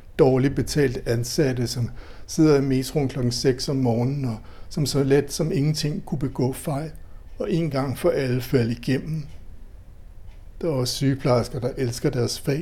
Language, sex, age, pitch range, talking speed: Danish, male, 60-79, 95-145 Hz, 165 wpm